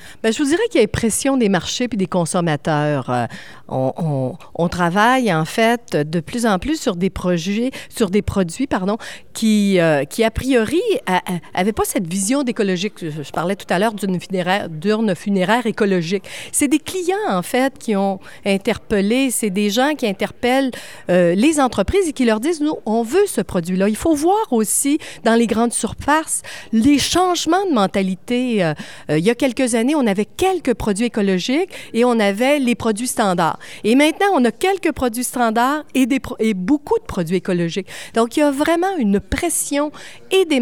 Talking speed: 195 wpm